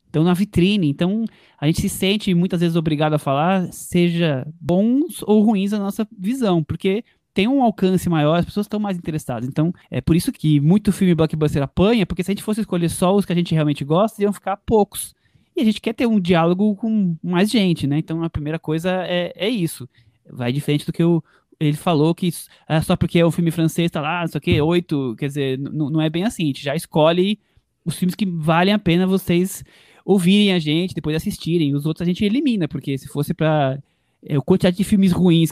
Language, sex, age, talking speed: Portuguese, male, 20-39, 220 wpm